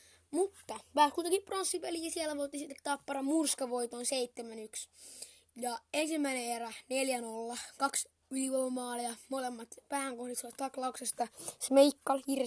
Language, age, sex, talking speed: Finnish, 20-39, female, 105 wpm